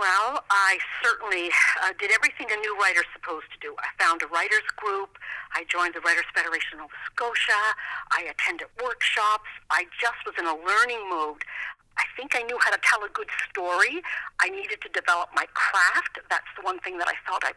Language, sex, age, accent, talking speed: English, female, 50-69, American, 200 wpm